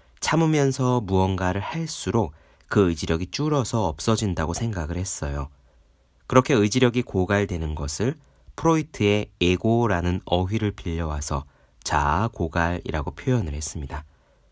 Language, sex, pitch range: Korean, male, 80-115 Hz